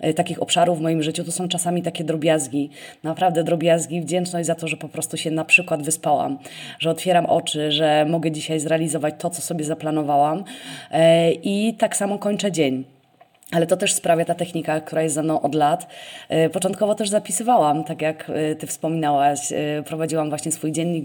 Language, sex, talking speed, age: Polish, female, 175 wpm, 20-39